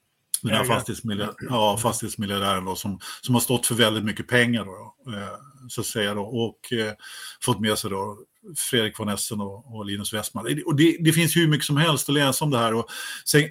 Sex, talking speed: male, 190 wpm